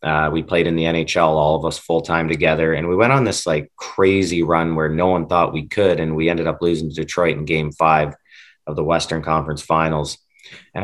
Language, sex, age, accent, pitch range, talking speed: English, male, 30-49, American, 80-90 Hz, 235 wpm